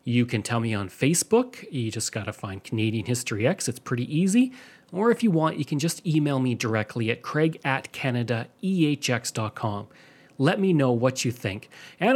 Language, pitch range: English, 115-155 Hz